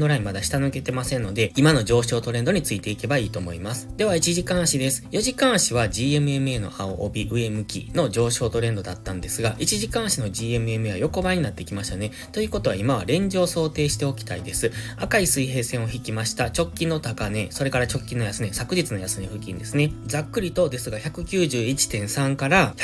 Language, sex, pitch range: Japanese, male, 110-155 Hz